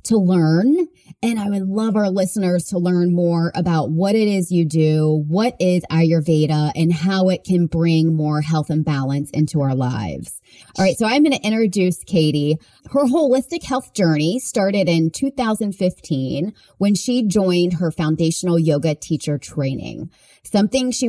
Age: 30-49